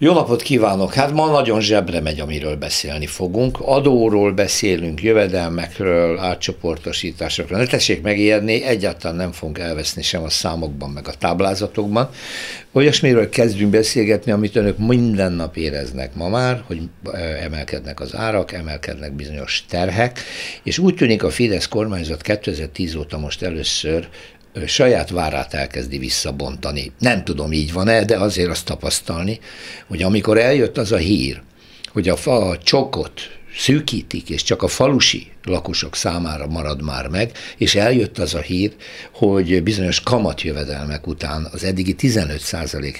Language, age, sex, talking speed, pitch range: Hungarian, 60-79, male, 140 wpm, 80-115 Hz